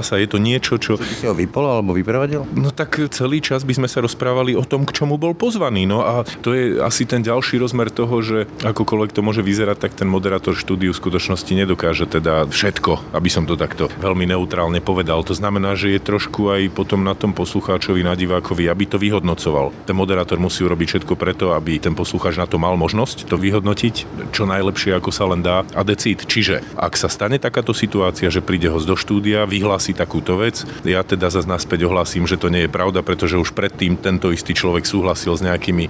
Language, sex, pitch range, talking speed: Slovak, male, 90-110 Hz, 200 wpm